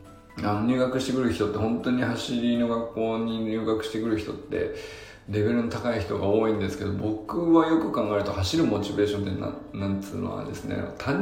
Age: 20-39